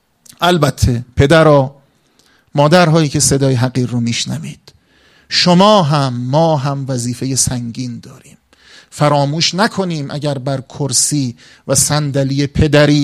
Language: Persian